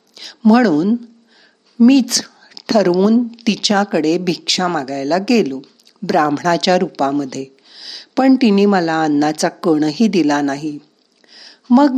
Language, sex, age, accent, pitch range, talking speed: Marathi, female, 50-69, native, 160-240 Hz, 85 wpm